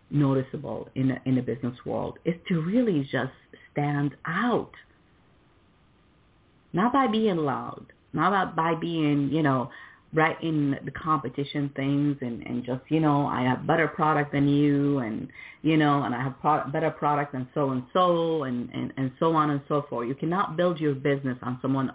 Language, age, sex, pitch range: English, 40-59, female, 130-170 Hz